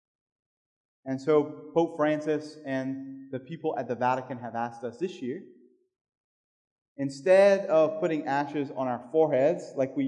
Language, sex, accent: English, male, American